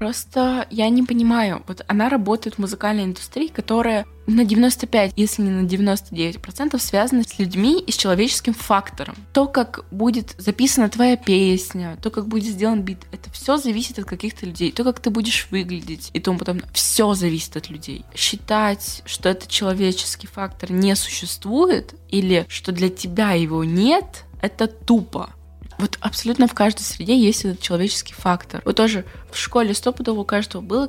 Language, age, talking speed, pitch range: Russian, 20-39, 165 wpm, 185-225 Hz